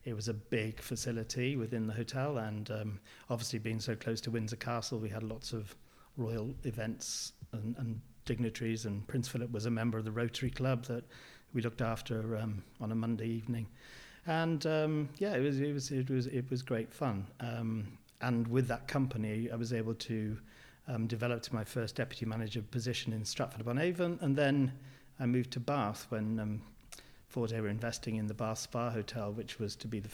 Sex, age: male, 40-59